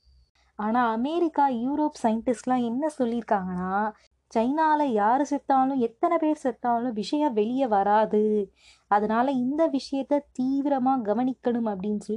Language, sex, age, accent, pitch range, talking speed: Tamil, female, 20-39, native, 220-270 Hz, 110 wpm